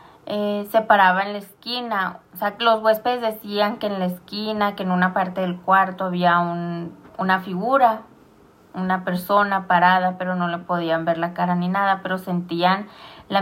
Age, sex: 20-39, female